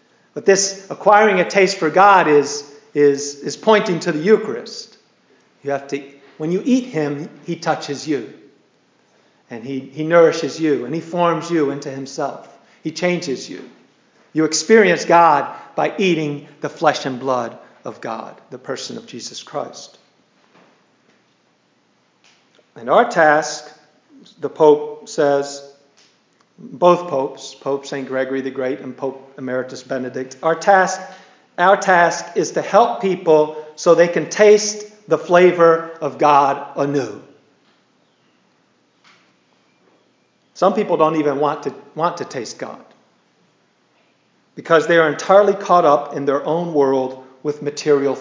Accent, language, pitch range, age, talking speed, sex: American, English, 140-175 Hz, 50-69, 135 wpm, male